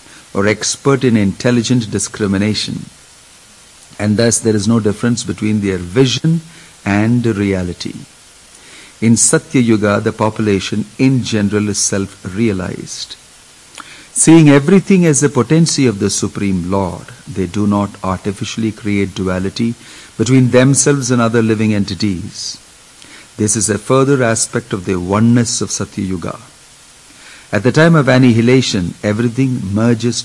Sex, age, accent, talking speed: male, 50-69, Indian, 125 wpm